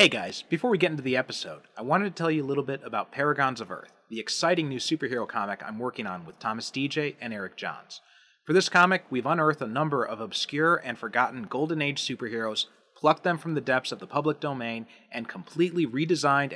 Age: 30-49